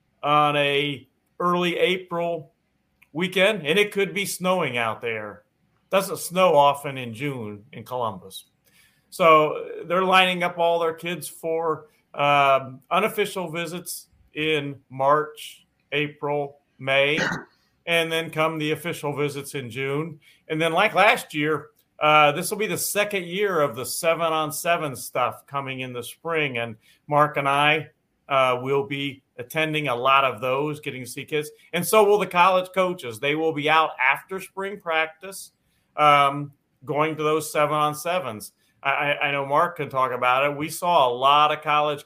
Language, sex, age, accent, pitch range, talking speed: English, male, 40-59, American, 135-170 Hz, 155 wpm